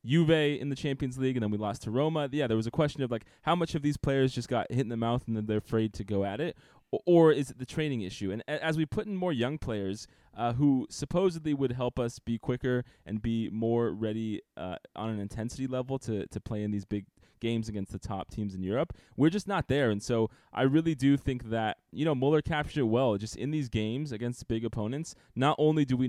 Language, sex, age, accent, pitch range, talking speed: English, male, 20-39, American, 110-140 Hz, 250 wpm